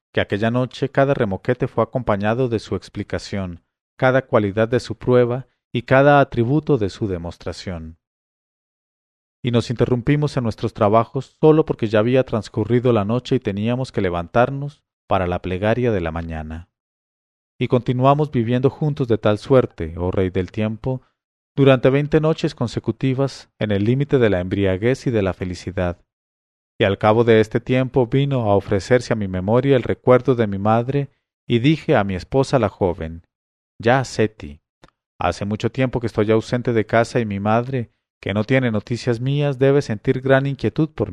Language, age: English, 40-59